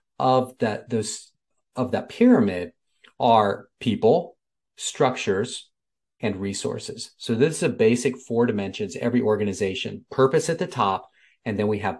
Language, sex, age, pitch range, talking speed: English, male, 40-59, 110-145 Hz, 140 wpm